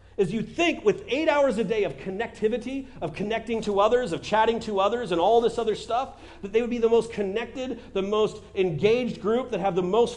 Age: 40-59